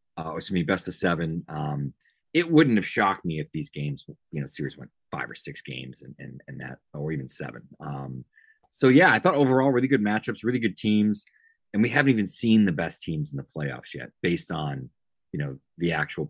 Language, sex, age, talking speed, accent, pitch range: English, male, 30-49, 225 wpm, American, 80-115 Hz